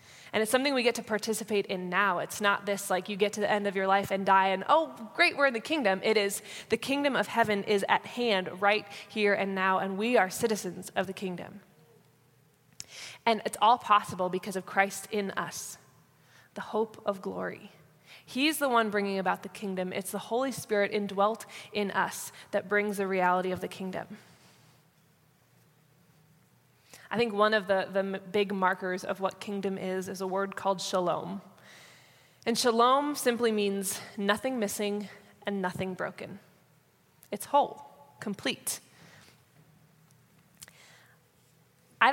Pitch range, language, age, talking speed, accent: 185-215 Hz, English, 20-39, 160 wpm, American